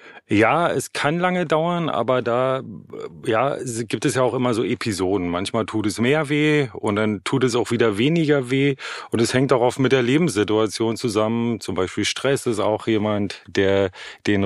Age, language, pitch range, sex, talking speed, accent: 30-49, German, 105-130 Hz, male, 190 wpm, German